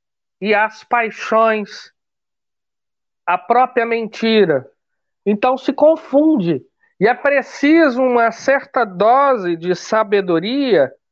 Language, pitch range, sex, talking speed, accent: Portuguese, 205-300 Hz, male, 90 wpm, Brazilian